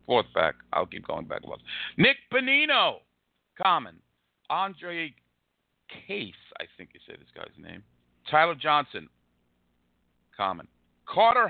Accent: American